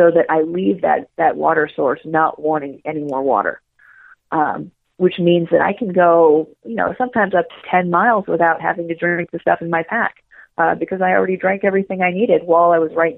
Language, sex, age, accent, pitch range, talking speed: English, female, 30-49, American, 155-180 Hz, 220 wpm